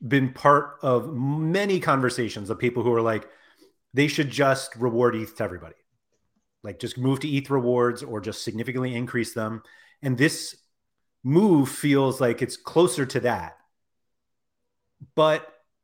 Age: 30-49